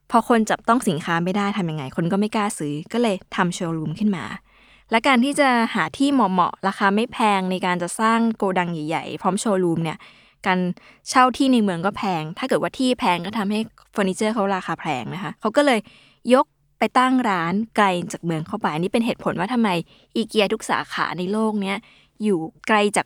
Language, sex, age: Thai, female, 20-39